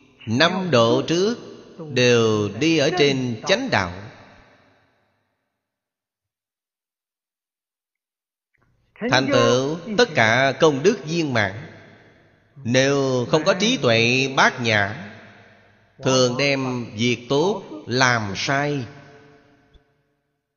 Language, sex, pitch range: Vietnamese, male, 110-145 Hz